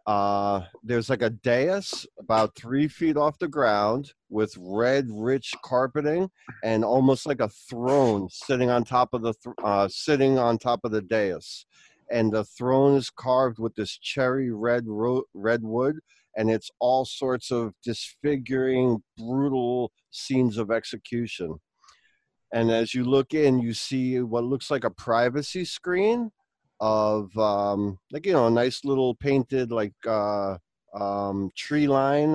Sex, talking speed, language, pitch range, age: male, 150 wpm, English, 115-140 Hz, 50-69